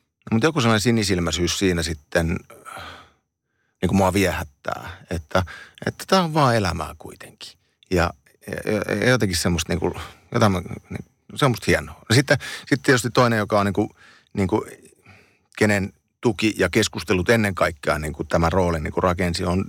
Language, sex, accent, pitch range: Finnish, male, native, 85-105 Hz